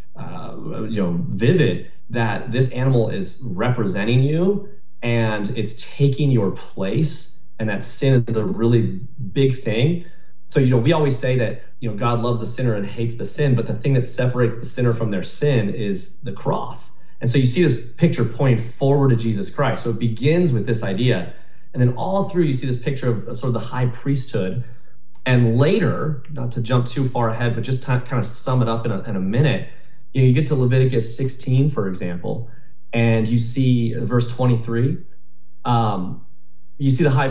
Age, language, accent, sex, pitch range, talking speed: 30-49, English, American, male, 110-135 Hz, 200 wpm